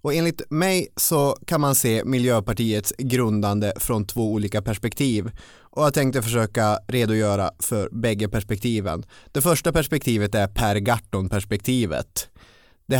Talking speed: 125 wpm